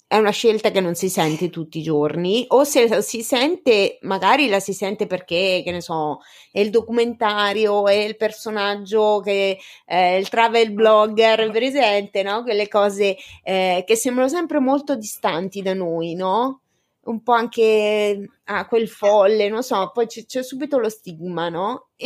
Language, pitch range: Italian, 195-240 Hz